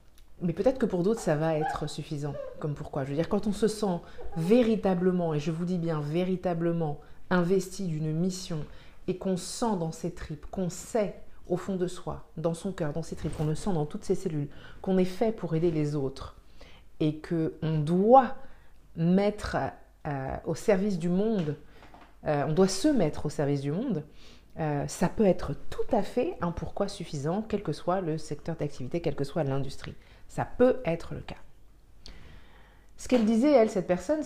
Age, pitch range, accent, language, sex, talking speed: 40-59, 145-190 Hz, French, French, female, 190 wpm